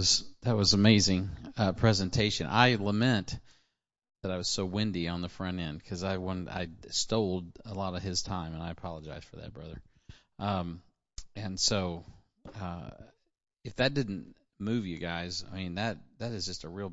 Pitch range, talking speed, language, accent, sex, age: 95-110 Hz, 175 wpm, English, American, male, 40-59